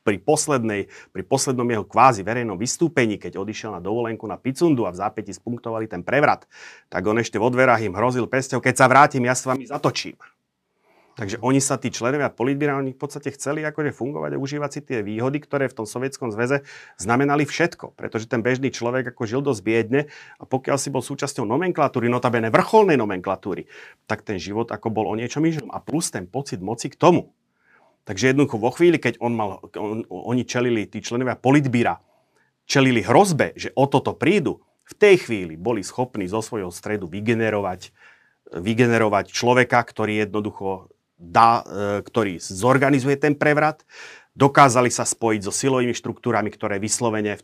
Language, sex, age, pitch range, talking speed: Slovak, male, 30-49, 105-135 Hz, 170 wpm